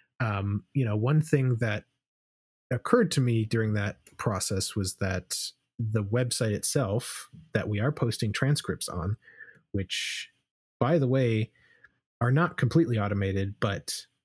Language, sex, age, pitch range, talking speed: English, male, 30-49, 100-130 Hz, 135 wpm